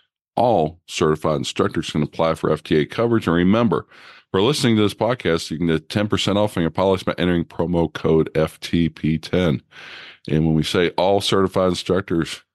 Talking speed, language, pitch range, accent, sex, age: 165 wpm, English, 80-100 Hz, American, male, 50-69